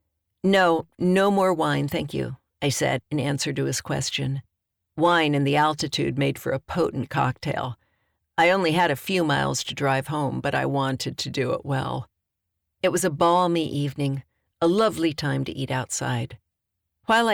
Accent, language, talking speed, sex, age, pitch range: American, English, 175 wpm, female, 50-69, 105-160 Hz